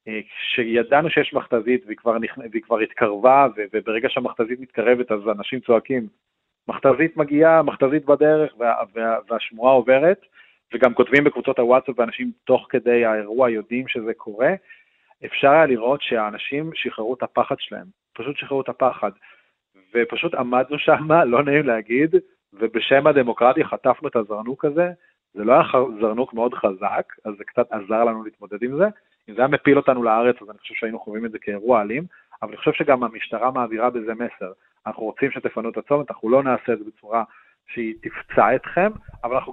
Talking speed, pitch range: 170 wpm, 115-140 Hz